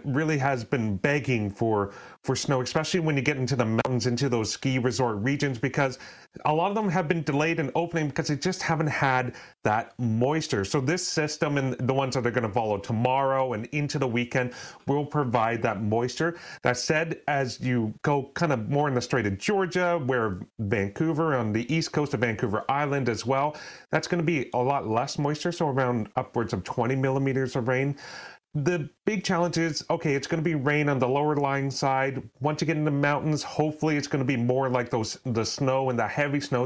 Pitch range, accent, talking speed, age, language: 120-150 Hz, American, 210 wpm, 30-49, English